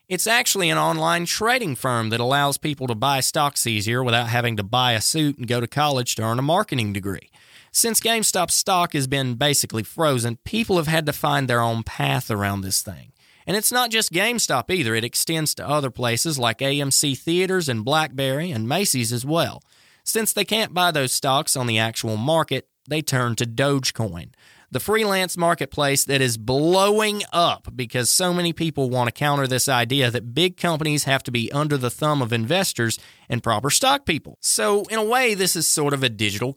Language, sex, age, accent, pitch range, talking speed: English, male, 30-49, American, 120-170 Hz, 200 wpm